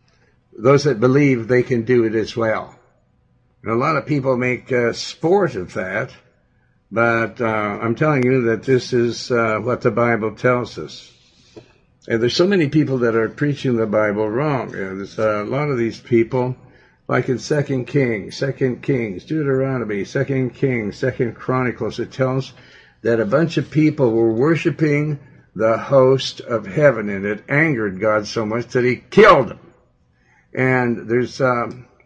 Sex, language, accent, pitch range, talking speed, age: male, English, American, 110-135 Hz, 170 wpm, 60-79